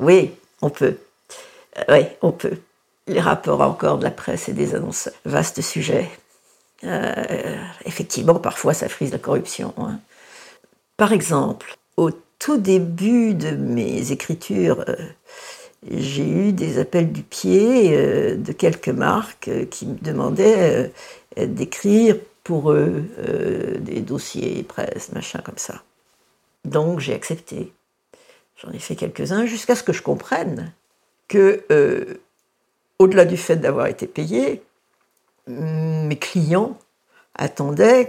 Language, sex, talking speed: French, female, 130 wpm